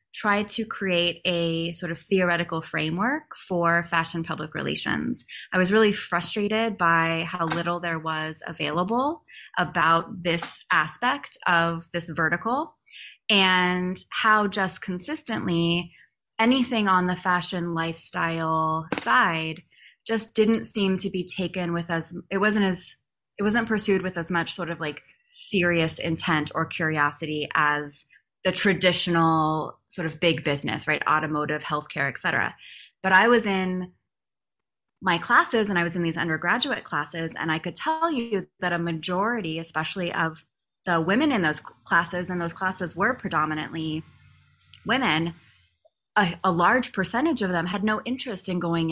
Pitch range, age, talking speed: 160-195 Hz, 20-39, 145 wpm